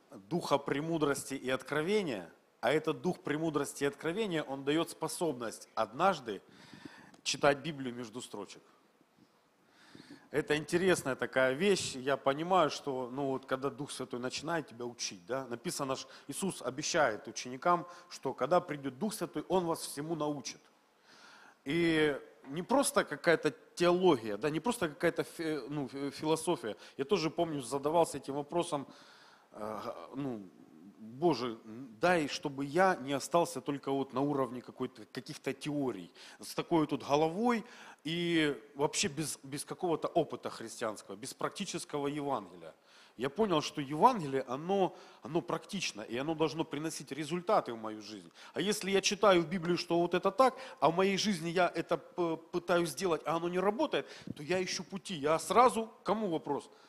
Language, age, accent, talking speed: Russian, 40-59, native, 140 wpm